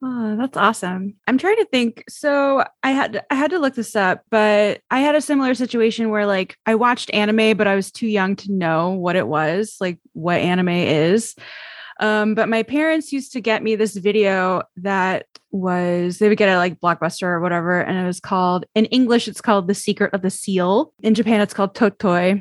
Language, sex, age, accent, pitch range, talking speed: English, female, 20-39, American, 180-220 Hz, 210 wpm